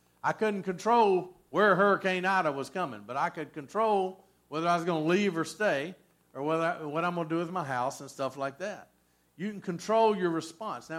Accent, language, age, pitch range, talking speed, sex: American, English, 50-69, 120-175 Hz, 225 wpm, male